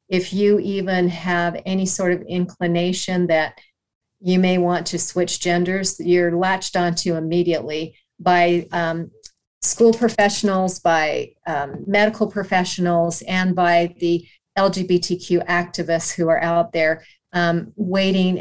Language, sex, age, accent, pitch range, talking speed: English, female, 40-59, American, 175-210 Hz, 125 wpm